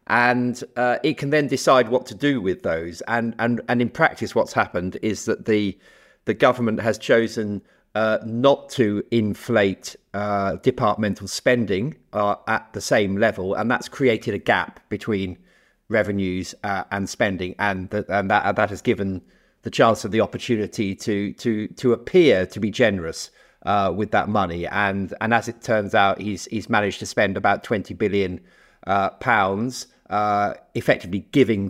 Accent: British